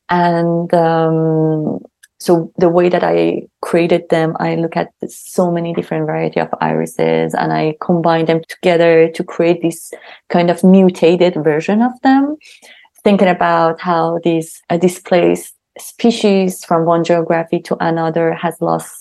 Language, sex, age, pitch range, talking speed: English, female, 20-39, 160-185 Hz, 145 wpm